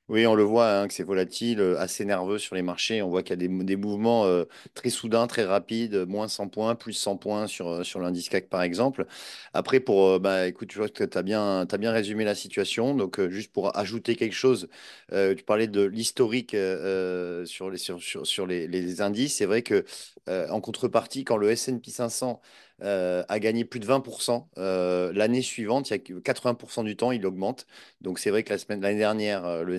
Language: French